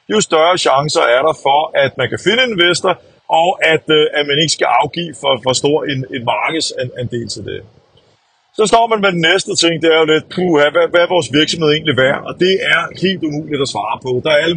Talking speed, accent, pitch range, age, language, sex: 225 wpm, native, 140-170 Hz, 30-49, Danish, male